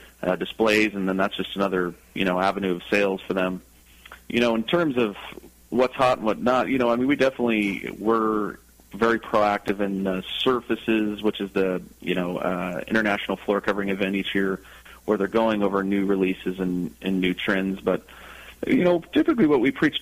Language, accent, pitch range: English, American, 95-115 Hz